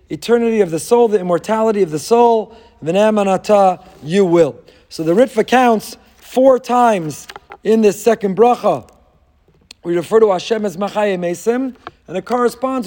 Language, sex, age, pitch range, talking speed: English, male, 40-59, 170-220 Hz, 155 wpm